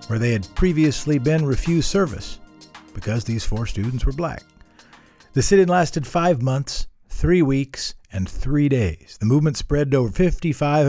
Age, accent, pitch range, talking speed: 50-69, American, 100-150 Hz, 160 wpm